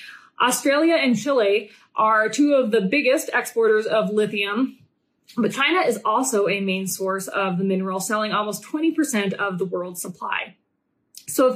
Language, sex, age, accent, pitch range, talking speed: English, female, 20-39, American, 200-265 Hz, 155 wpm